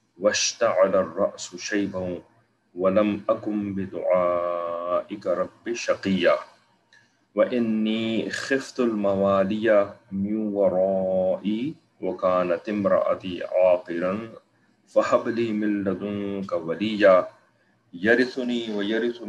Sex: male